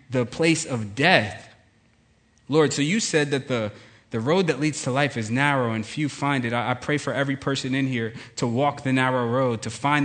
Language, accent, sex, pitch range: English, American, male, 120-150 Hz